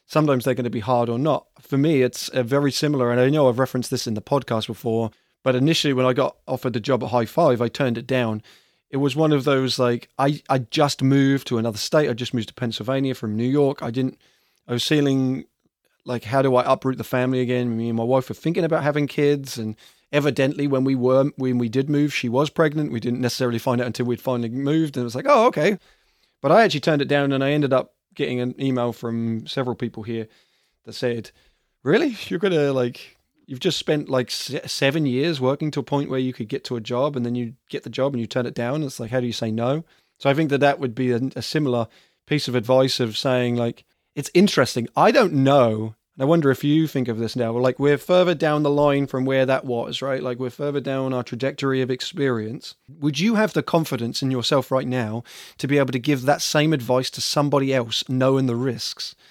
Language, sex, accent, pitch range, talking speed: English, male, British, 125-145 Hz, 245 wpm